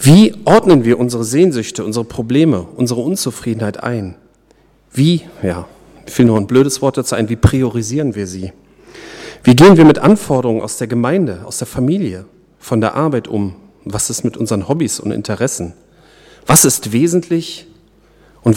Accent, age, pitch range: German, 40-59, 115-150 Hz